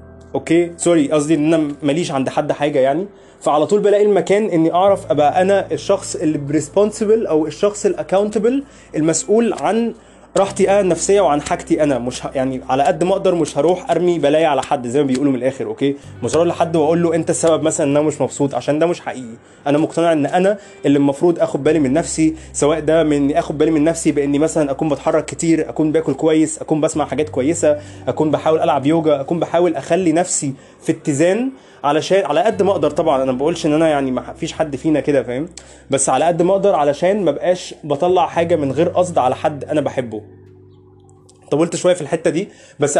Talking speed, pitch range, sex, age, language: 200 wpm, 145-180 Hz, male, 20-39, Arabic